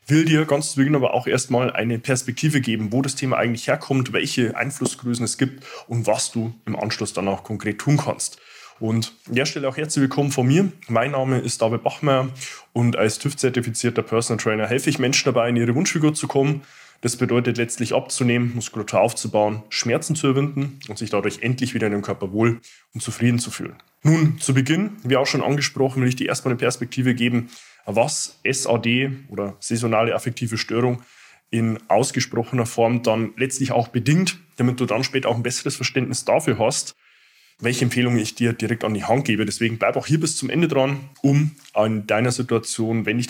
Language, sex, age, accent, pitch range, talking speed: German, male, 20-39, German, 115-135 Hz, 195 wpm